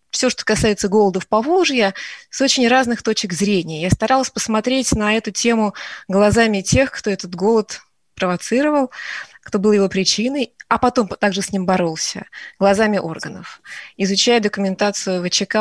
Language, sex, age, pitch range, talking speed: Russian, female, 20-39, 200-250 Hz, 145 wpm